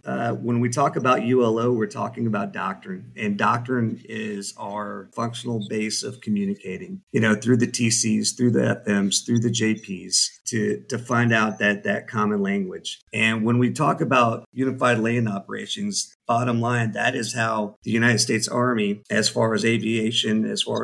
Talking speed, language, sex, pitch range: 175 wpm, English, male, 110-125 Hz